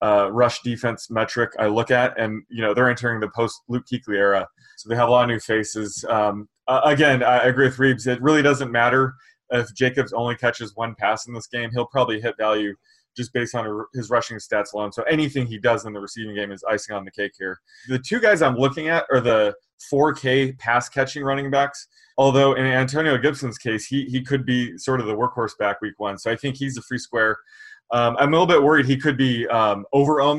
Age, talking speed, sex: 20-39, 230 wpm, male